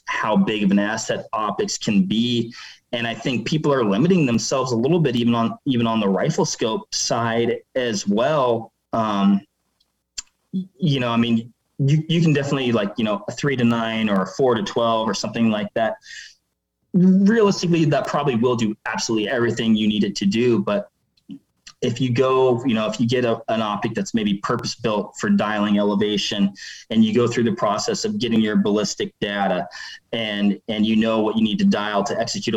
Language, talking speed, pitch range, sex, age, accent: English, 195 wpm, 105-145 Hz, male, 20-39, American